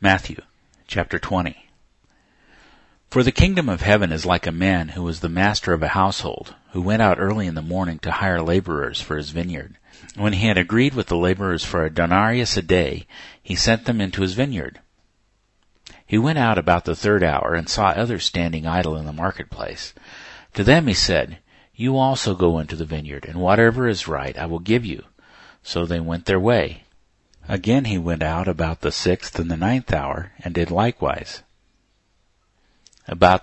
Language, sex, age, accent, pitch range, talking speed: English, male, 50-69, American, 85-105 Hz, 185 wpm